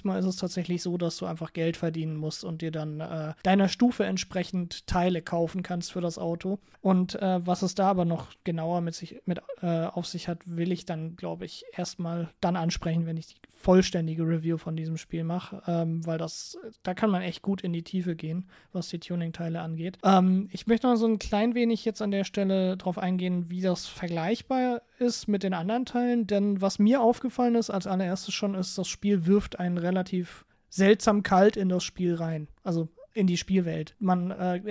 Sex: male